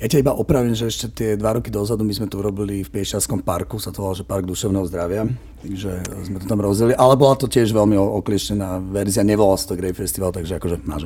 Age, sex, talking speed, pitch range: 40-59, male, 235 wpm, 90-105 Hz